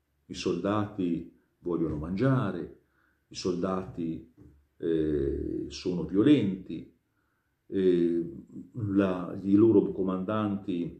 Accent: native